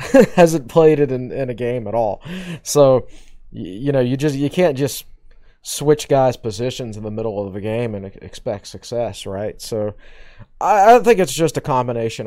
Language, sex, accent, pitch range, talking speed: English, male, American, 105-135 Hz, 190 wpm